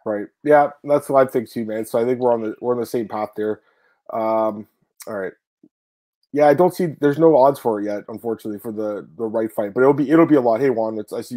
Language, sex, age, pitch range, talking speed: English, male, 20-39, 115-145 Hz, 265 wpm